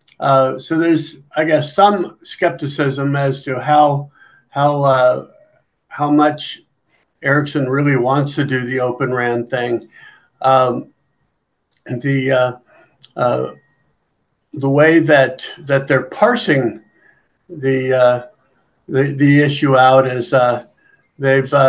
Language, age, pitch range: English, 60-79, 130-145 Hz